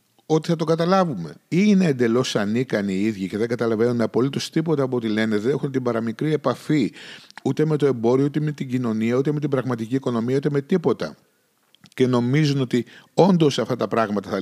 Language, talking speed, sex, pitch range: Greek, 195 wpm, male, 100-150 Hz